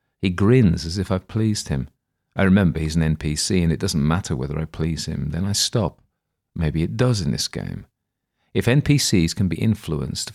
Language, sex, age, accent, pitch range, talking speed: English, male, 40-59, British, 75-100 Hz, 195 wpm